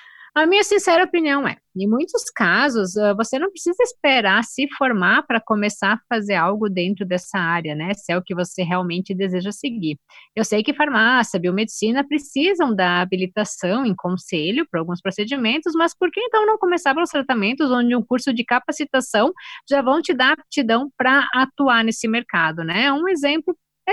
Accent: Brazilian